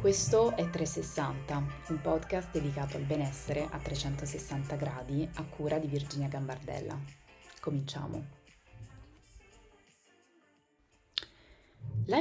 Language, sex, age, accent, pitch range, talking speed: Italian, female, 20-39, native, 145-170 Hz, 90 wpm